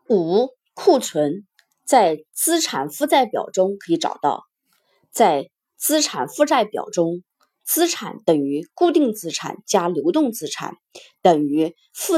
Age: 30-49